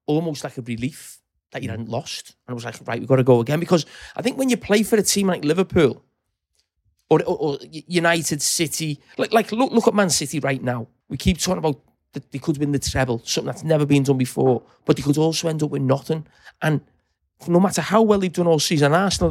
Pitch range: 130-170 Hz